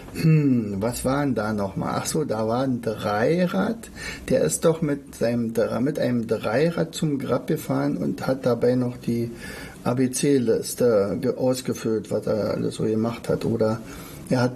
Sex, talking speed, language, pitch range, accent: male, 160 wpm, German, 115-160 Hz, German